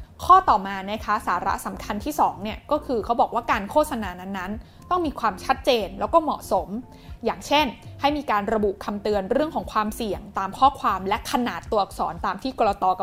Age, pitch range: 20-39, 205-275 Hz